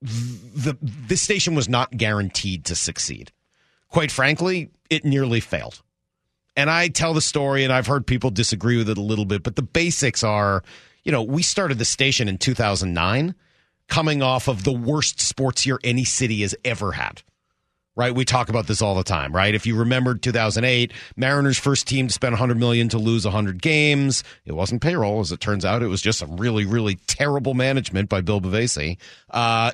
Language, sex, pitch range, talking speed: English, male, 105-135 Hz, 190 wpm